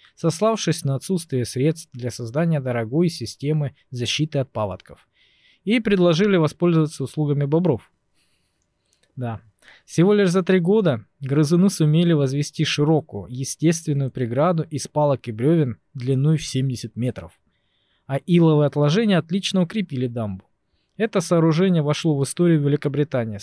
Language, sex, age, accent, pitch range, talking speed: Russian, male, 20-39, native, 125-170 Hz, 125 wpm